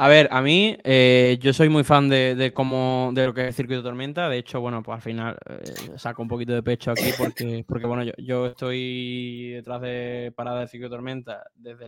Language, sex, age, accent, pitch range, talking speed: Spanish, male, 20-39, Spanish, 120-140 Hz, 245 wpm